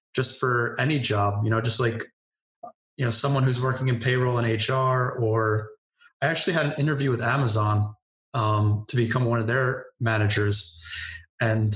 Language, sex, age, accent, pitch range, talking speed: English, male, 20-39, American, 110-130 Hz, 170 wpm